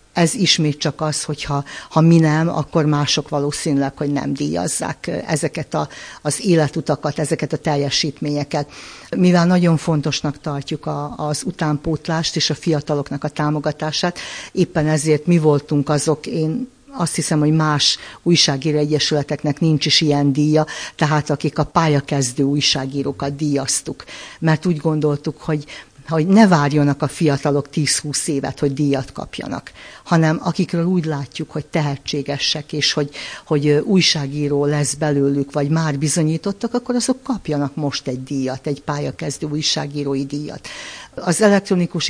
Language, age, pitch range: Hungarian, 50-69, 145-165 Hz